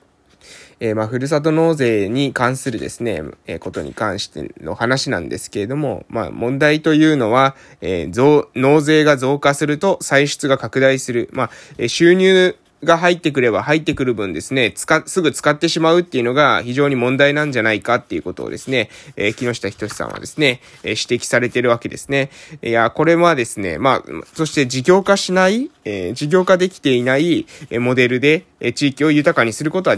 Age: 20-39